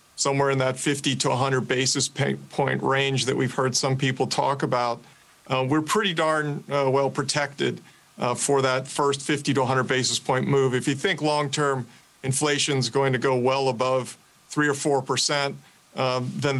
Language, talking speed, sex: English, 175 wpm, male